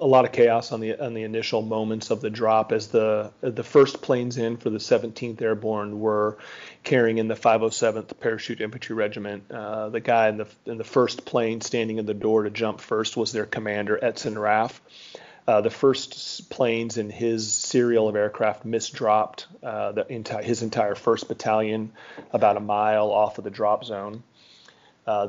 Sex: male